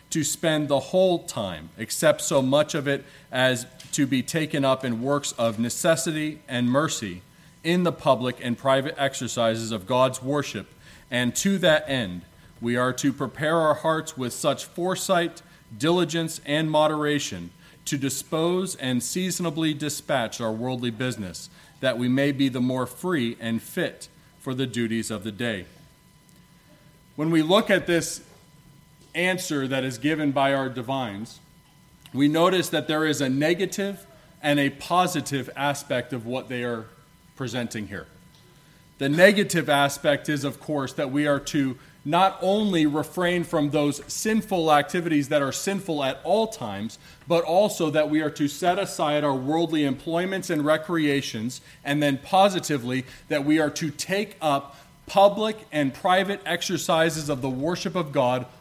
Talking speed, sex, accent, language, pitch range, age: 155 wpm, male, American, English, 130-165 Hz, 40-59